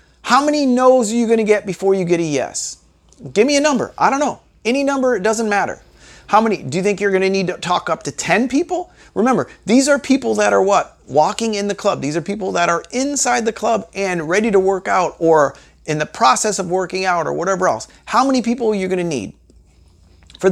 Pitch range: 165-230 Hz